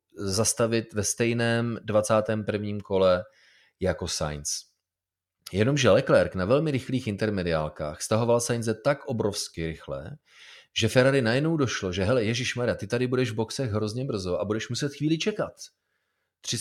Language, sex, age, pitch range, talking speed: Czech, male, 30-49, 90-115 Hz, 135 wpm